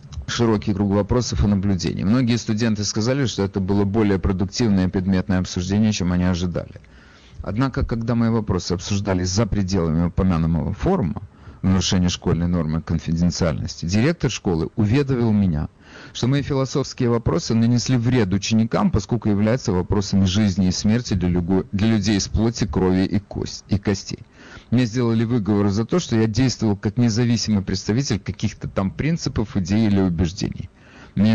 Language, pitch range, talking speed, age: Russian, 95-120 Hz, 145 wpm, 40-59